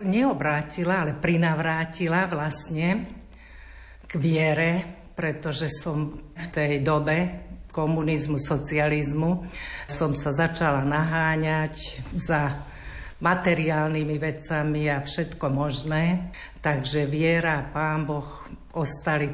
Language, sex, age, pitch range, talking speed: Slovak, female, 60-79, 150-170 Hz, 90 wpm